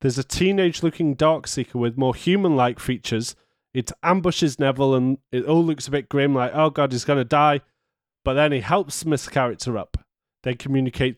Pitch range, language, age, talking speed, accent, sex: 125-150 Hz, English, 30-49, 180 wpm, British, male